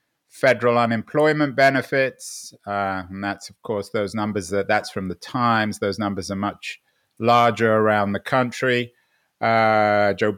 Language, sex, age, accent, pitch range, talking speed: English, male, 30-49, British, 105-135 Hz, 145 wpm